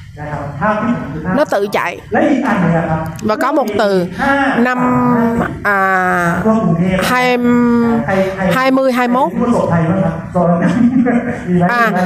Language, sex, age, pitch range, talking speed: Vietnamese, female, 20-39, 180-240 Hz, 70 wpm